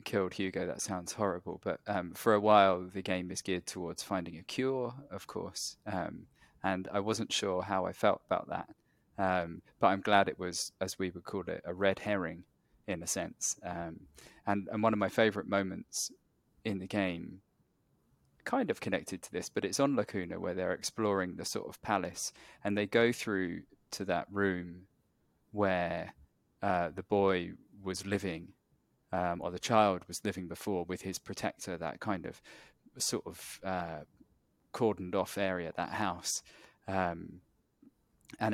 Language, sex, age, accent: English, male, 20-39, British